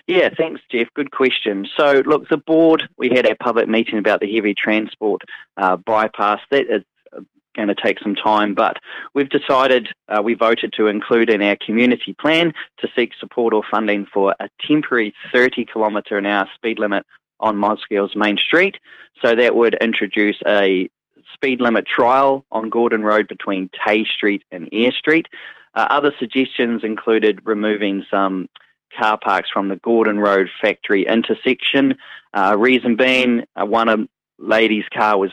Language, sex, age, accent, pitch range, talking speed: English, male, 20-39, Australian, 100-130 Hz, 155 wpm